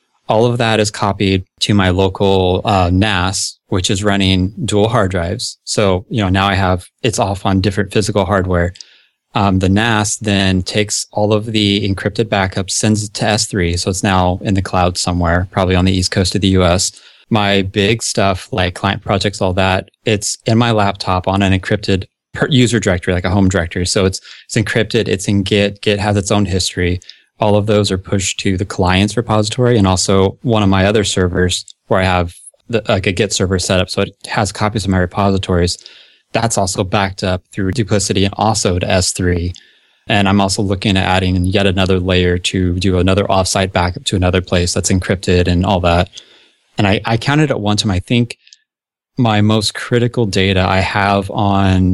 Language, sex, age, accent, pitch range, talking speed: English, male, 20-39, American, 95-105 Hz, 200 wpm